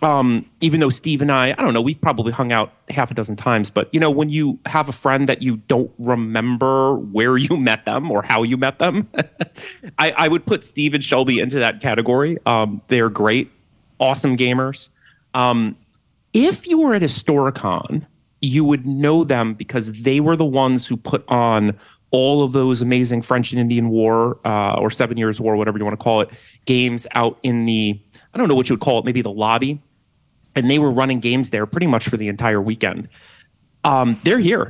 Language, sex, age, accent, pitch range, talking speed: English, male, 30-49, American, 110-135 Hz, 210 wpm